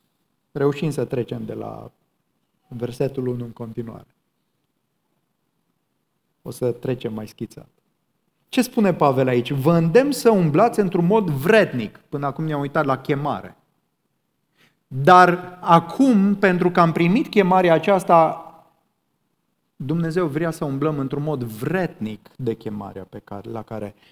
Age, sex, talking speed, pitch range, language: 30-49, male, 125 wpm, 125-170 Hz, Romanian